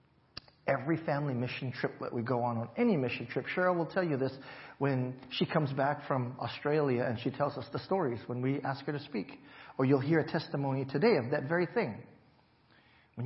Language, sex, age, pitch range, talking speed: English, male, 40-59, 130-180 Hz, 210 wpm